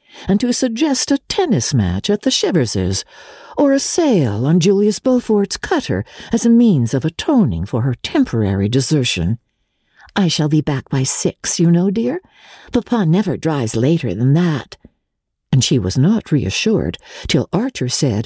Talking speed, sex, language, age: 160 wpm, female, English, 60-79